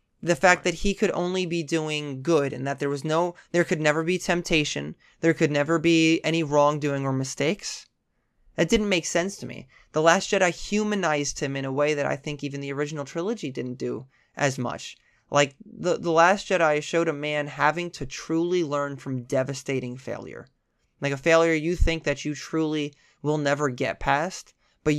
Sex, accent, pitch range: male, American, 140-165 Hz